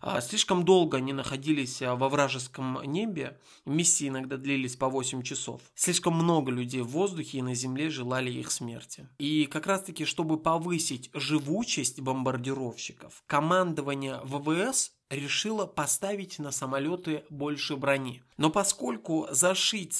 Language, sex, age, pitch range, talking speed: Russian, male, 20-39, 135-165 Hz, 130 wpm